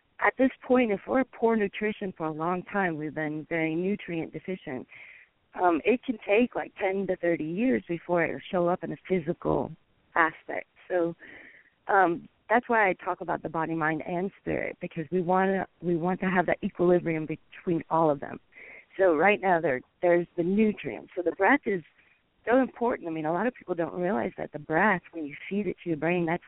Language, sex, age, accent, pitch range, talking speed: English, female, 40-59, American, 160-195 Hz, 205 wpm